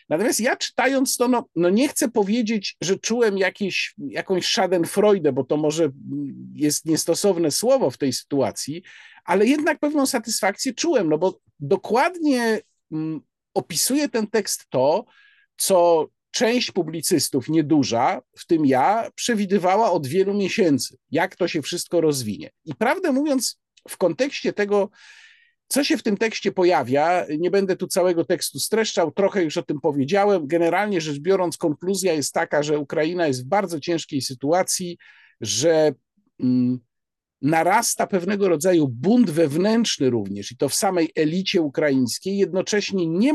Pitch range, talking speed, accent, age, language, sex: 155-215 Hz, 140 wpm, native, 50-69, Polish, male